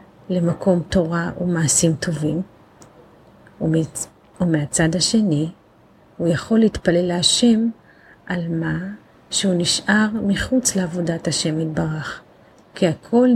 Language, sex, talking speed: Hebrew, female, 90 wpm